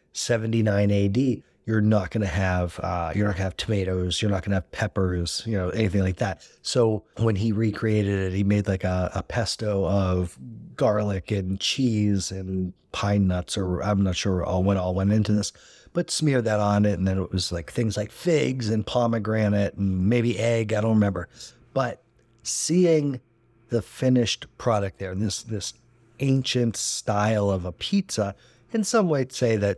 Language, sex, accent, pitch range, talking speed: English, male, American, 100-120 Hz, 185 wpm